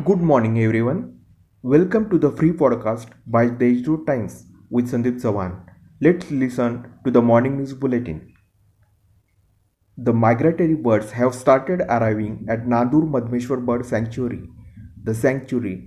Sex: male